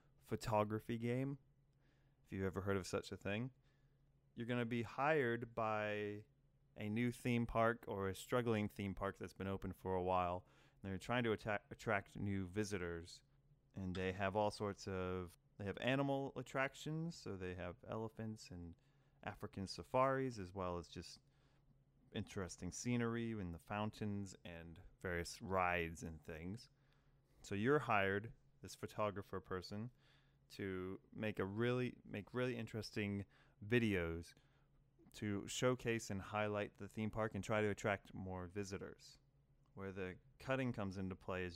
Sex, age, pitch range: male, 30-49, 95-135 Hz